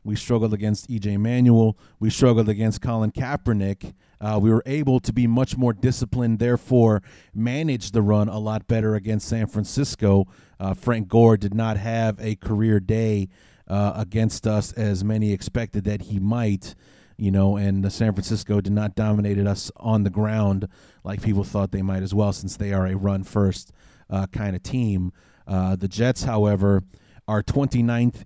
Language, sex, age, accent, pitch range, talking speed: English, male, 30-49, American, 100-115 Hz, 170 wpm